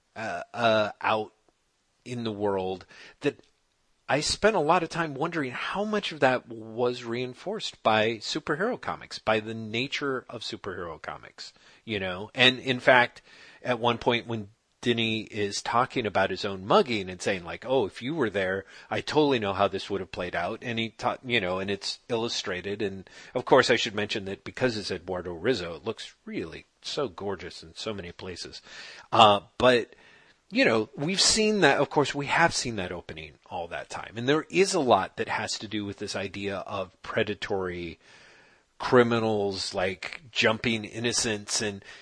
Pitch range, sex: 100-125 Hz, male